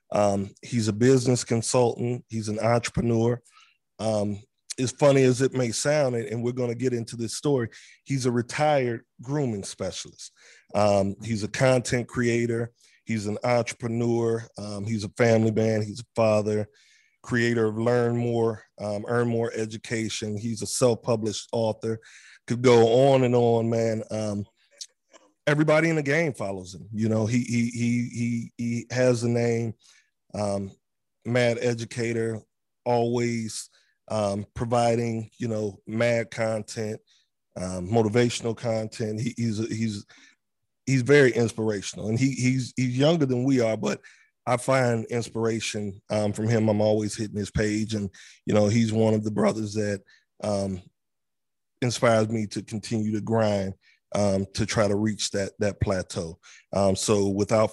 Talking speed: 150 wpm